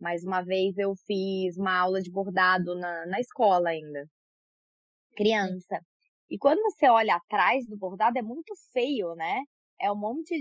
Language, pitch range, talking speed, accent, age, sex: Portuguese, 205-285 Hz, 160 wpm, Brazilian, 20-39, female